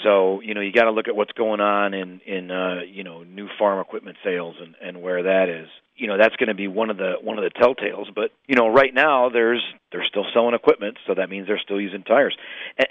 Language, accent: English, American